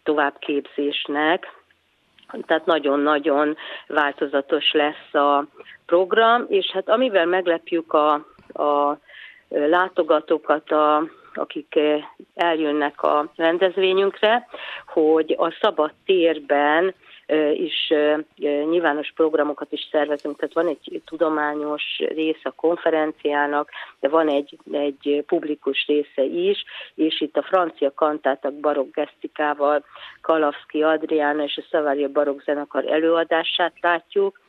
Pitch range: 145-170 Hz